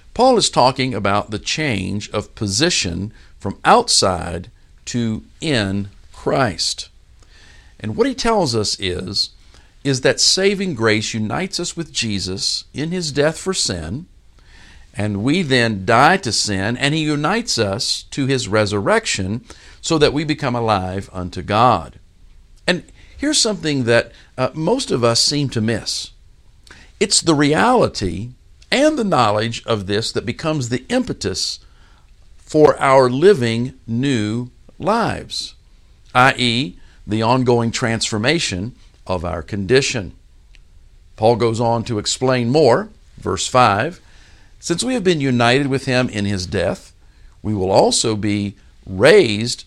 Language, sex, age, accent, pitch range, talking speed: English, male, 50-69, American, 95-140 Hz, 135 wpm